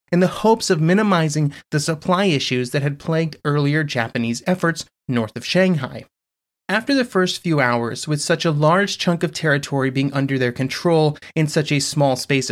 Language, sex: English, male